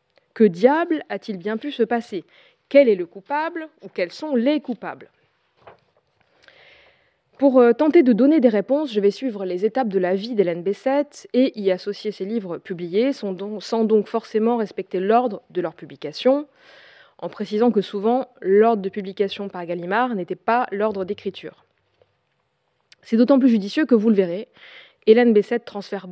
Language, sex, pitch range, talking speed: French, female, 195-250 Hz, 160 wpm